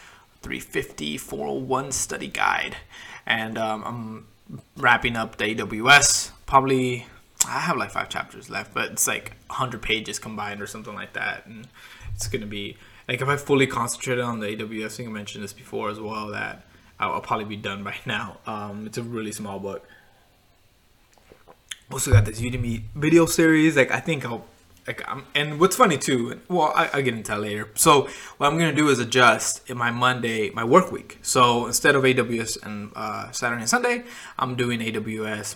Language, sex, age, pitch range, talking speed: English, male, 20-39, 105-135 Hz, 180 wpm